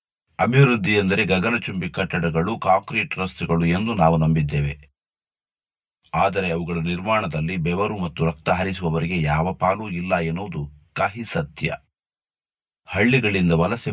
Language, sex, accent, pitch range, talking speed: Kannada, male, native, 80-95 Hz, 100 wpm